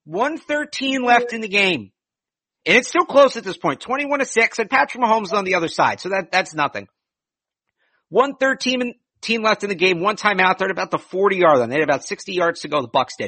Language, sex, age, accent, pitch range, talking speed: English, male, 50-69, American, 170-250 Hz, 240 wpm